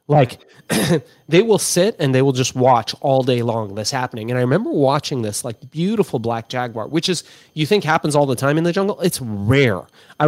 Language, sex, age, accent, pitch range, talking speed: English, male, 30-49, American, 125-165 Hz, 215 wpm